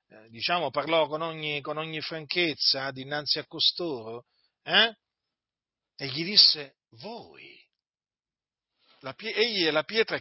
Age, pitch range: 40-59, 145-210 Hz